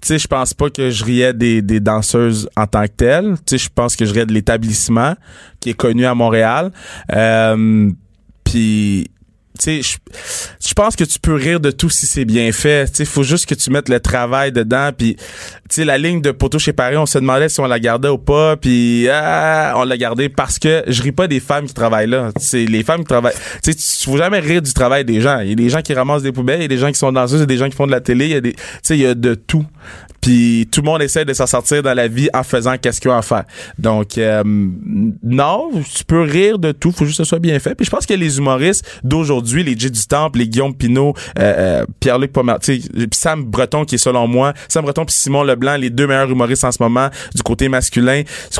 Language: French